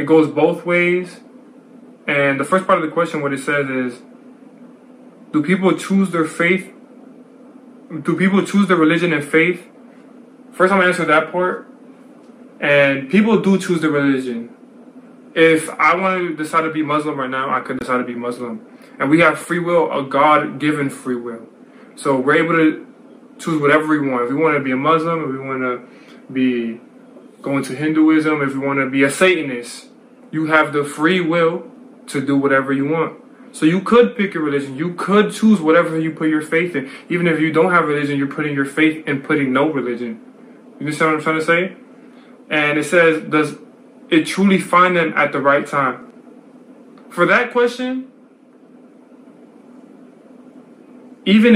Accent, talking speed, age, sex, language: American, 185 wpm, 20-39, male, English